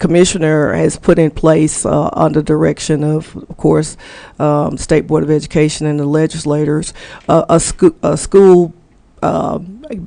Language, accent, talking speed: English, American, 150 wpm